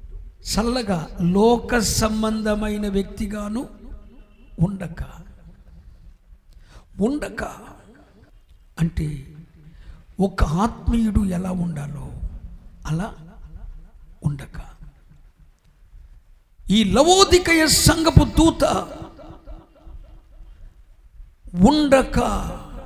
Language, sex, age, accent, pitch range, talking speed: Telugu, male, 60-79, native, 155-210 Hz, 45 wpm